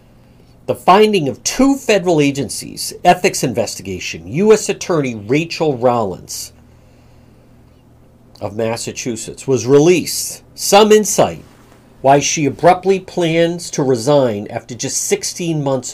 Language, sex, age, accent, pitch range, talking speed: English, male, 50-69, American, 125-190 Hz, 105 wpm